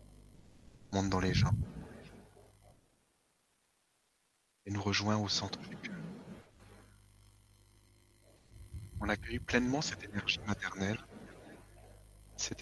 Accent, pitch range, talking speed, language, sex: French, 95-105 Hz, 85 wpm, French, male